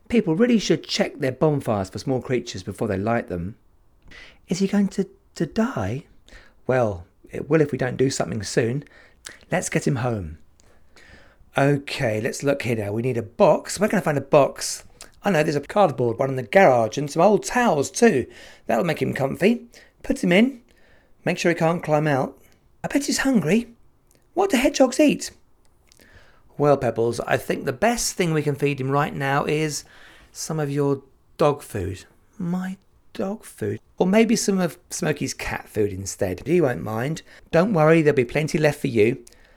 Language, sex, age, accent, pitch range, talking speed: English, male, 40-59, British, 115-185 Hz, 185 wpm